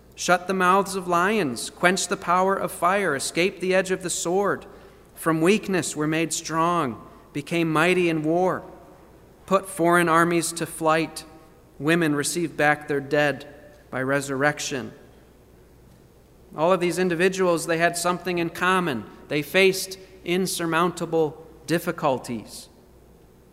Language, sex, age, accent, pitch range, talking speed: English, male, 40-59, American, 155-185 Hz, 130 wpm